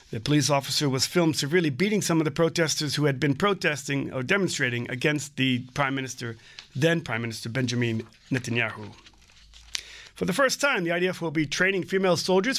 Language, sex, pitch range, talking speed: English, male, 140-185 Hz, 175 wpm